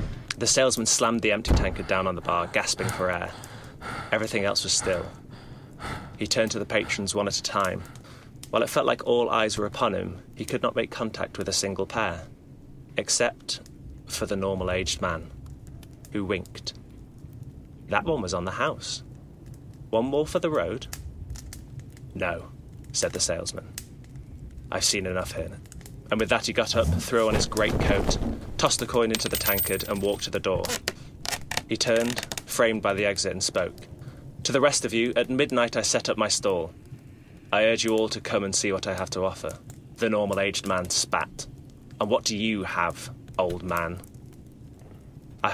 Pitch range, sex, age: 95-125 Hz, male, 20-39